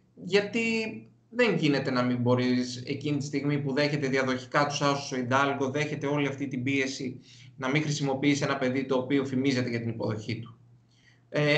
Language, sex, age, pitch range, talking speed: Greek, male, 20-39, 130-170 Hz, 175 wpm